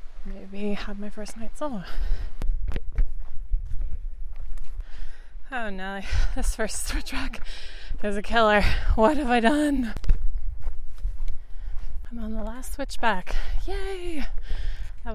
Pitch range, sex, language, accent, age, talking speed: 175-215 Hz, female, English, American, 20-39, 100 wpm